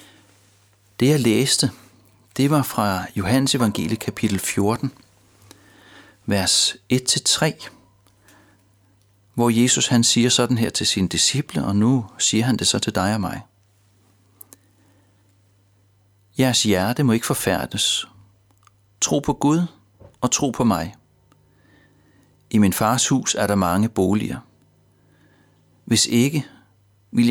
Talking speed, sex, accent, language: 115 wpm, male, native, Danish